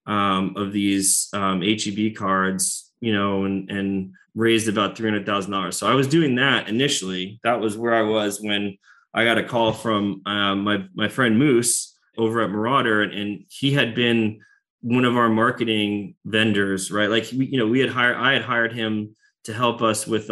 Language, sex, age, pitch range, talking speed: English, male, 20-39, 100-120 Hz, 190 wpm